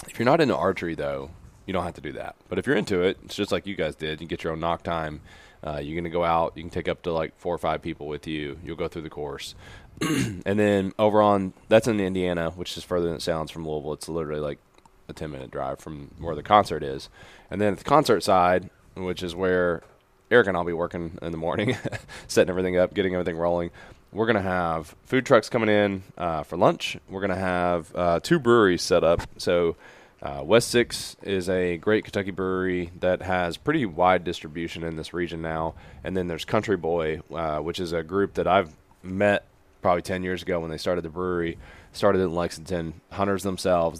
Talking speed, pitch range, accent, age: 225 wpm, 80-95 Hz, American, 20-39